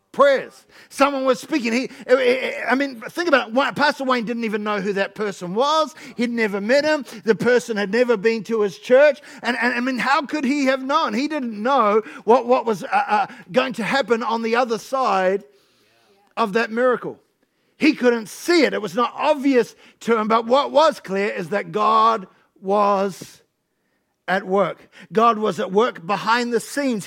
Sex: male